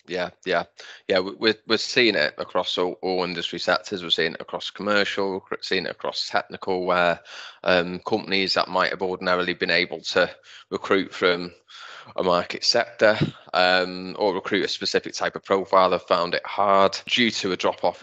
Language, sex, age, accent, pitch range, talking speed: English, male, 20-39, British, 95-110 Hz, 180 wpm